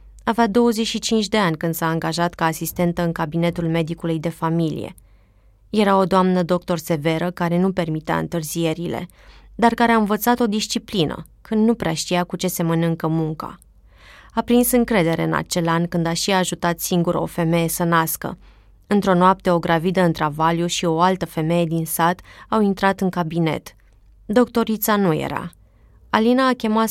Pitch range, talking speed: 165-200 Hz, 165 wpm